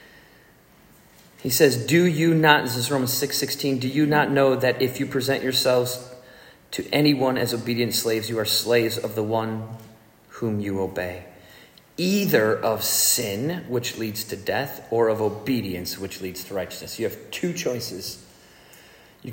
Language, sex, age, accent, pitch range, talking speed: English, male, 30-49, American, 110-145 Hz, 160 wpm